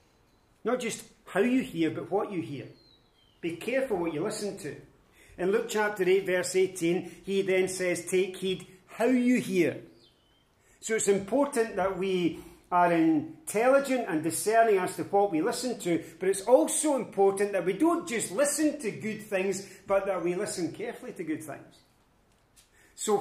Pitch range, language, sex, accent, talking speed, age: 160-210 Hz, English, male, British, 170 wpm, 40-59